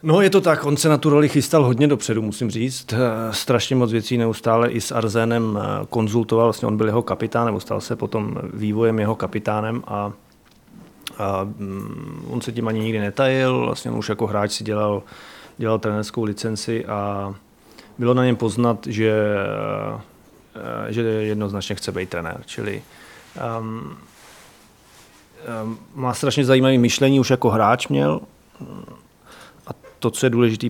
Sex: male